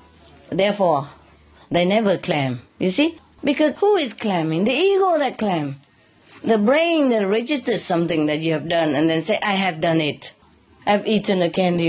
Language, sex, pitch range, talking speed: English, female, 140-215 Hz, 170 wpm